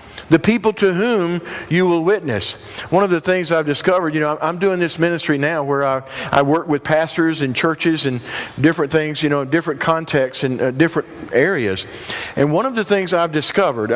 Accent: American